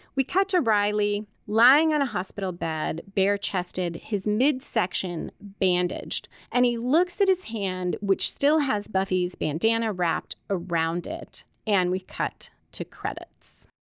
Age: 30-49